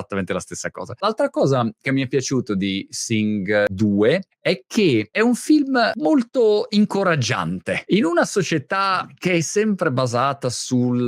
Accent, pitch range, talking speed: native, 115-160 Hz, 145 wpm